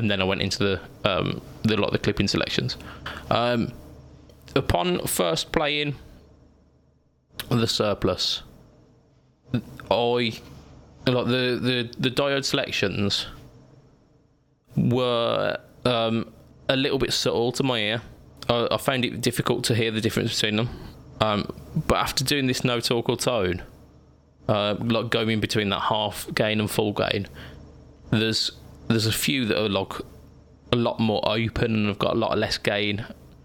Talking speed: 150 wpm